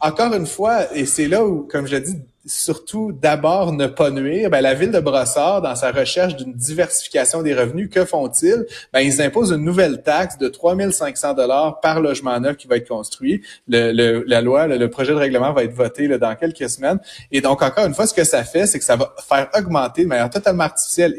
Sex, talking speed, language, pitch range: male, 225 wpm, French, 135-185 Hz